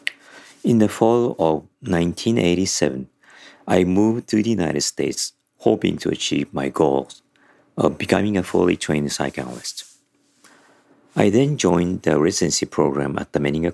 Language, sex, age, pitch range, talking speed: English, male, 40-59, 80-105 Hz, 135 wpm